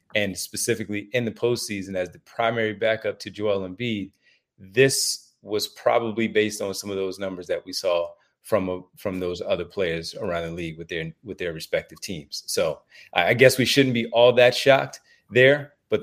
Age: 30-49